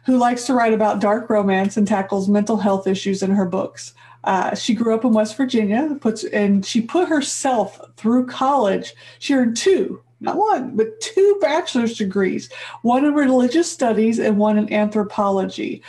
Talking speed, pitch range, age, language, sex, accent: 175 wpm, 215-270 Hz, 40-59, English, female, American